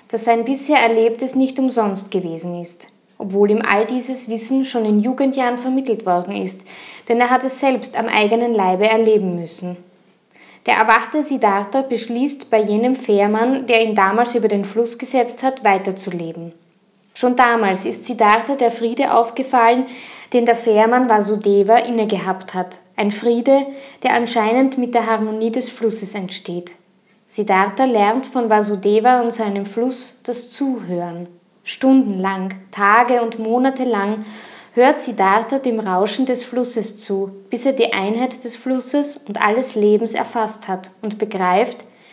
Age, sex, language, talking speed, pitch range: 20-39, female, German, 145 wpm, 205-255 Hz